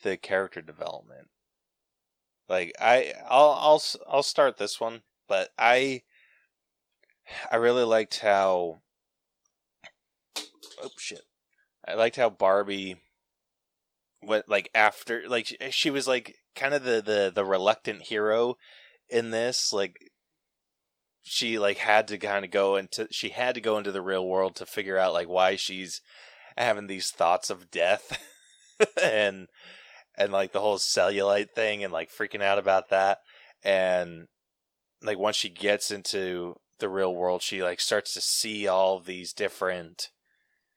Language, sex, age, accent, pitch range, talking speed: English, male, 20-39, American, 95-115 Hz, 145 wpm